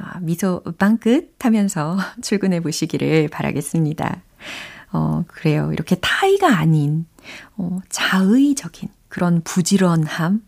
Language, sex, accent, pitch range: Korean, female, native, 170-245 Hz